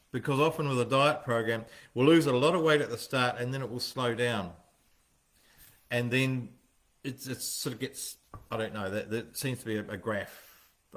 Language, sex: English, male